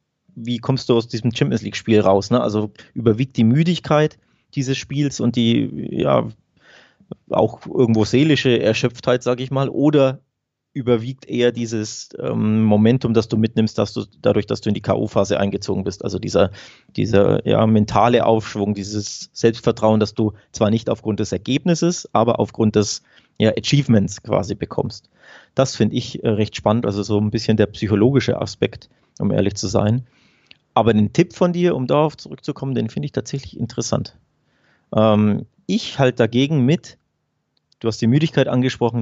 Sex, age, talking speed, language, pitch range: male, 30-49, 165 wpm, German, 110-130 Hz